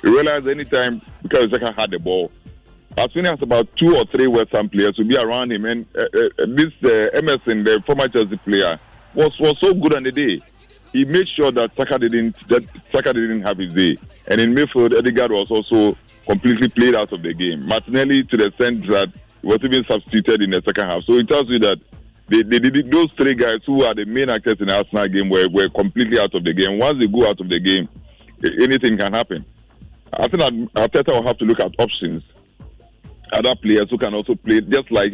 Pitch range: 100-125 Hz